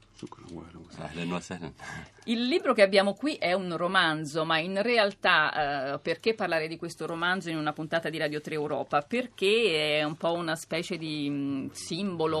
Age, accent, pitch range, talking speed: 40-59, native, 150-195 Hz, 155 wpm